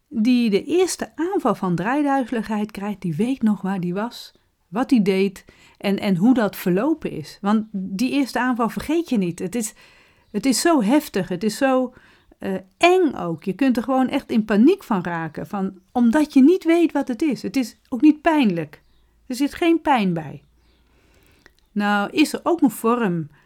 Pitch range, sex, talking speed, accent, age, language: 175-250 Hz, female, 185 wpm, Dutch, 40-59, Dutch